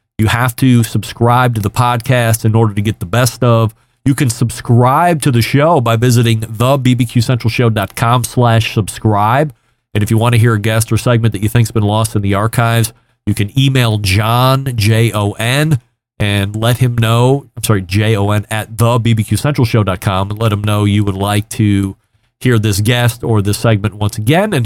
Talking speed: 180 wpm